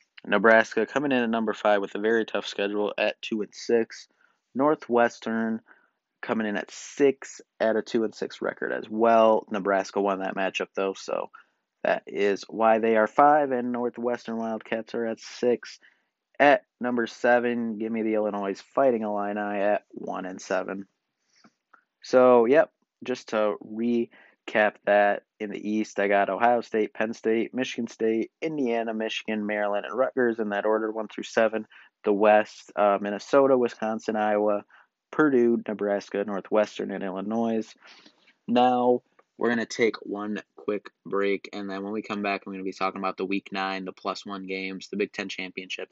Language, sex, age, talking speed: English, male, 30-49, 170 wpm